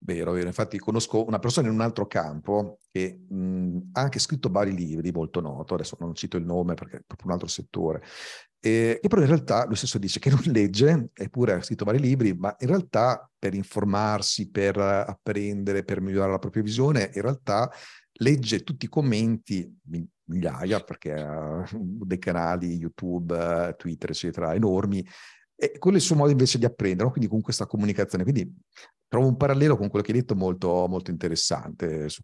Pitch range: 85-110 Hz